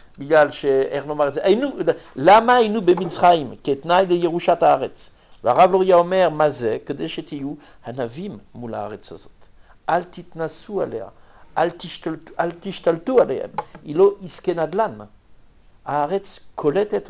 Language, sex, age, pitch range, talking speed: English, male, 50-69, 150-200 Hz, 125 wpm